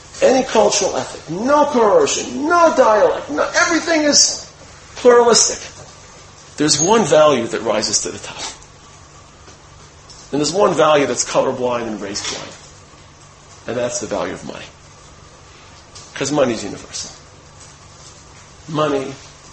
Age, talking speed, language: 40-59, 120 wpm, English